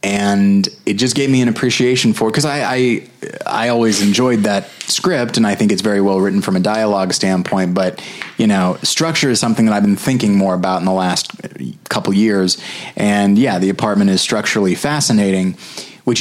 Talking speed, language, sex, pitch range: 195 wpm, English, male, 100-120 Hz